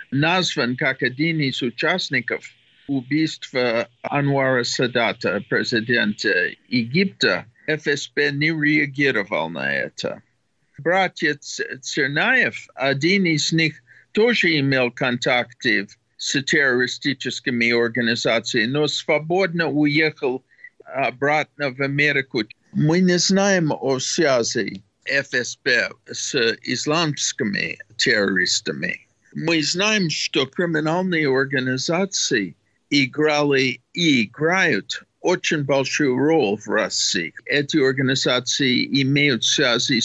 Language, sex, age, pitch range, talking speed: Russian, male, 50-69, 130-165 Hz, 85 wpm